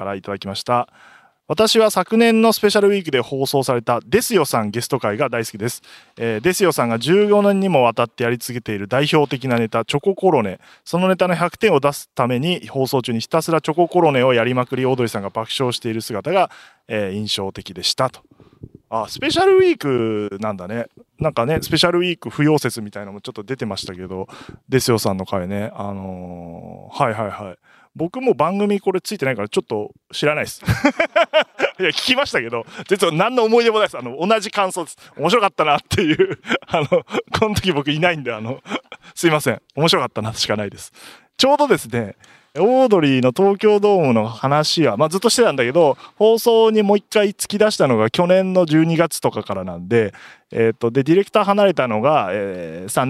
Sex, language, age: male, Japanese, 20-39